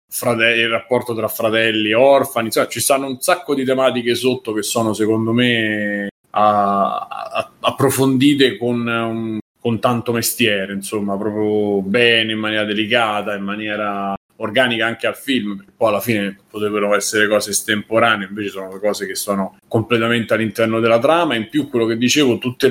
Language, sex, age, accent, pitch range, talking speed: Italian, male, 30-49, native, 105-125 Hz, 160 wpm